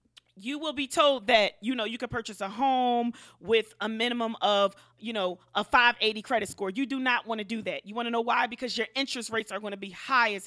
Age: 30-49